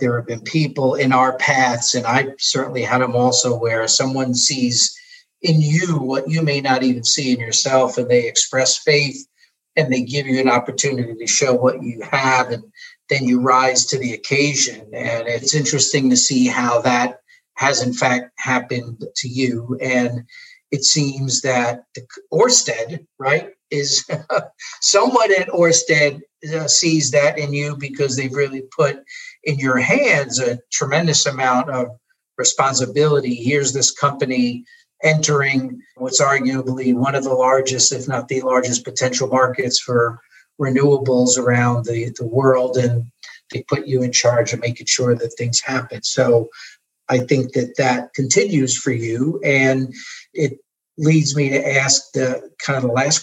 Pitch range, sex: 125-145 Hz, male